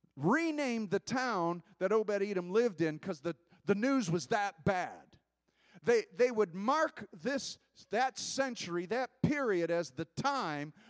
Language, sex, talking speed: English, male, 145 wpm